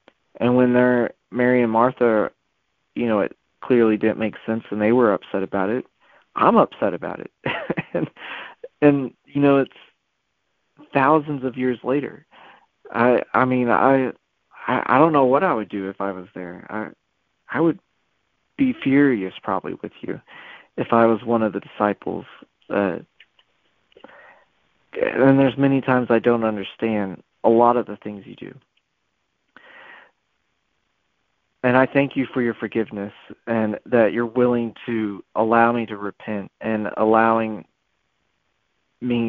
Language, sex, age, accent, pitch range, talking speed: English, male, 40-59, American, 105-125 Hz, 150 wpm